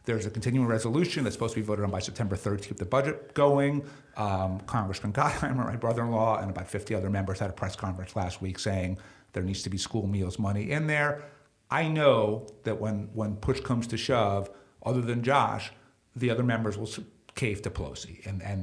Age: 50-69